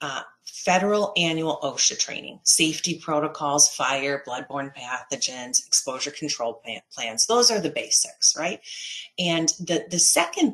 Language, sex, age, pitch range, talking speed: English, female, 40-59, 145-185 Hz, 120 wpm